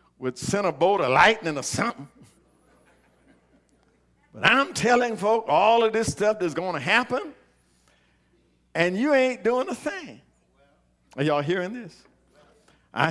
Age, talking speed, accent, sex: 50-69, 140 wpm, American, male